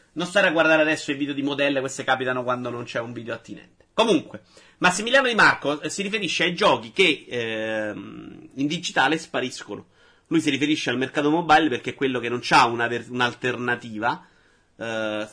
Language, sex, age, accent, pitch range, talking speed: Italian, male, 30-49, native, 120-160 Hz, 175 wpm